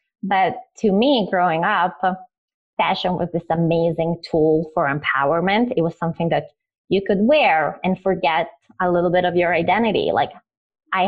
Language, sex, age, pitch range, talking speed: English, female, 20-39, 170-220 Hz, 155 wpm